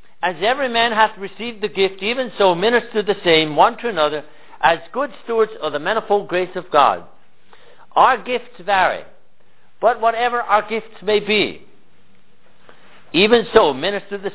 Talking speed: 155 wpm